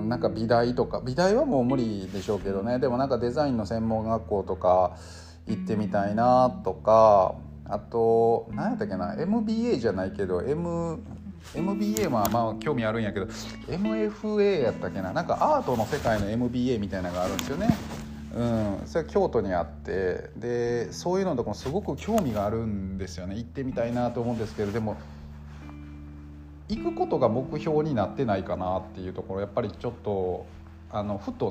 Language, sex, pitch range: Japanese, male, 95-130 Hz